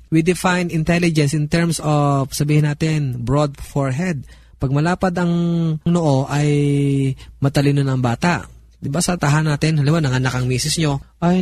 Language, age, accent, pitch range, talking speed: Filipino, 20-39, native, 140-180 Hz, 160 wpm